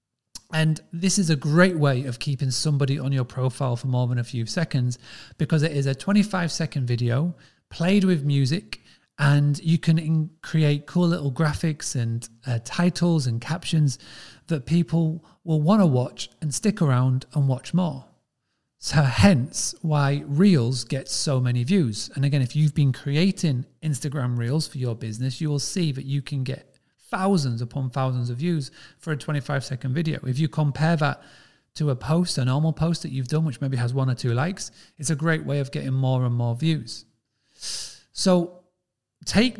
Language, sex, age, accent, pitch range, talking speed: English, male, 40-59, British, 130-165 Hz, 180 wpm